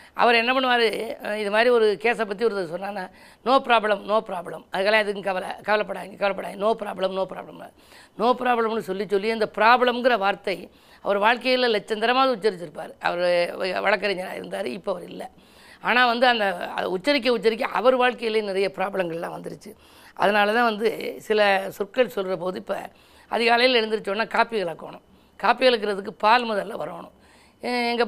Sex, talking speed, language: female, 150 wpm, Tamil